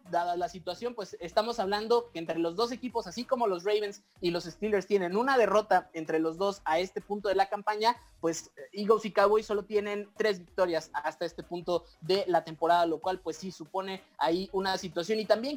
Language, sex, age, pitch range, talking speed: Spanish, male, 20-39, 175-225 Hz, 210 wpm